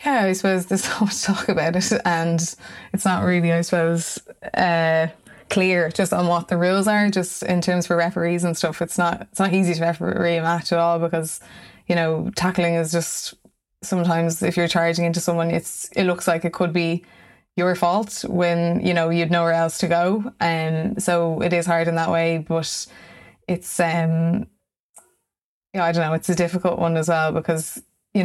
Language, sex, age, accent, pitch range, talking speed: English, female, 20-39, Irish, 165-180 Hz, 205 wpm